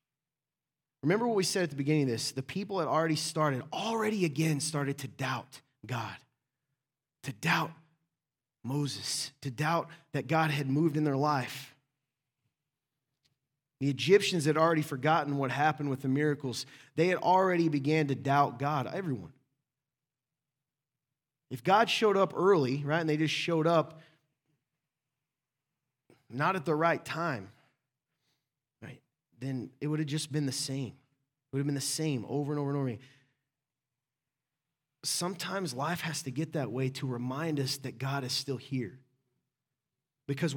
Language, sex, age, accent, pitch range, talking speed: English, male, 30-49, American, 135-160 Hz, 150 wpm